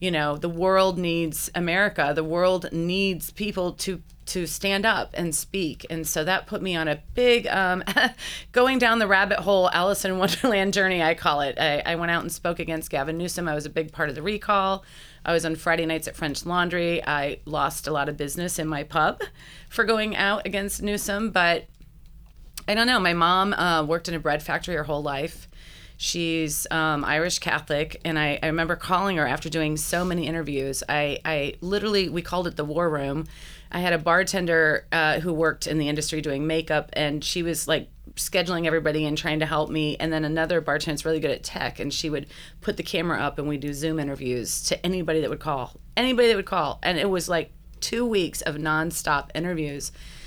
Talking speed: 210 wpm